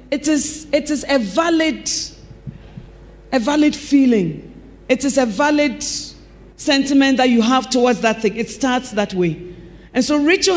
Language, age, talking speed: English, 40-59, 155 wpm